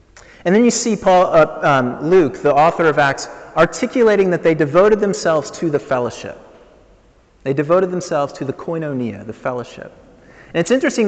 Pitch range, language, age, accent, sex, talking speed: 135-180 Hz, English, 30-49, American, male, 170 wpm